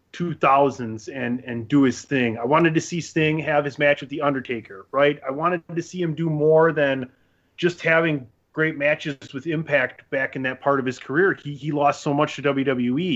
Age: 30-49